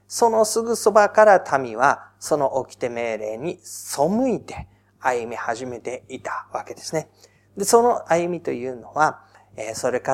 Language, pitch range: Japanese, 120-185 Hz